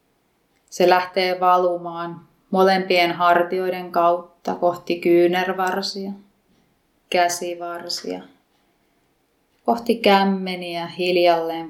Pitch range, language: 175-205 Hz, Finnish